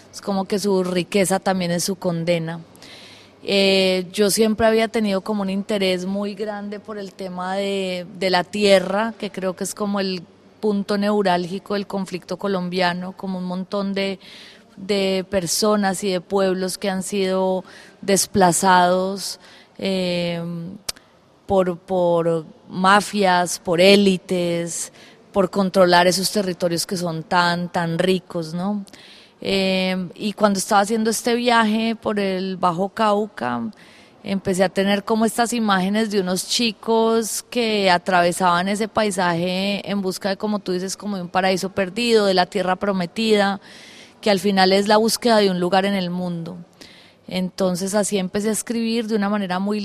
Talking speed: 150 wpm